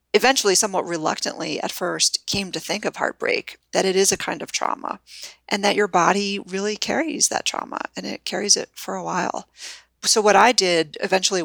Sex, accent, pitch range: female, American, 170-210 Hz